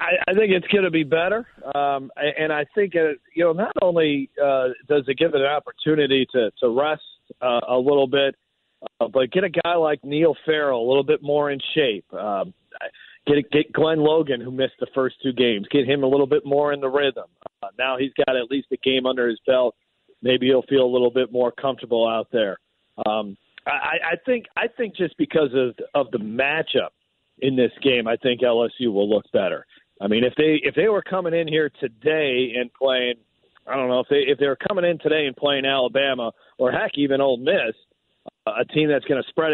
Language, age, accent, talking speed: English, 40-59, American, 220 wpm